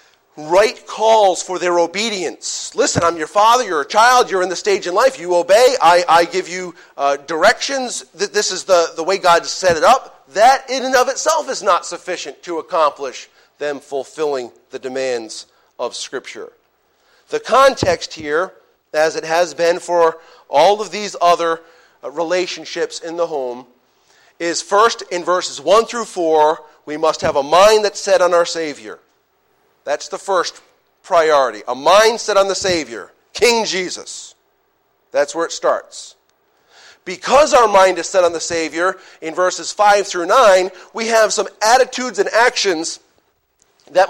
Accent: American